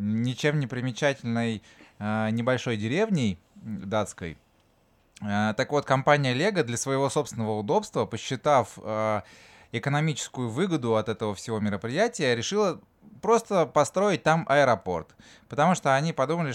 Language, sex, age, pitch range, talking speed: Russian, male, 20-39, 105-140 Hz, 110 wpm